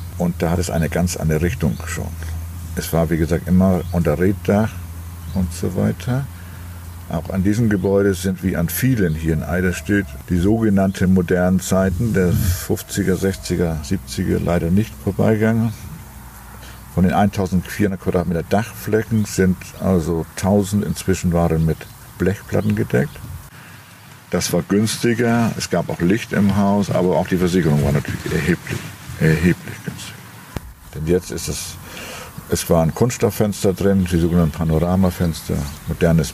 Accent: German